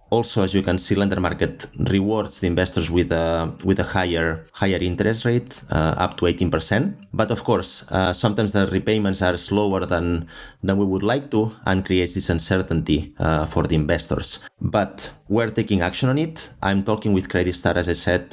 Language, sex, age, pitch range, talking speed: German, male, 30-49, 90-105 Hz, 195 wpm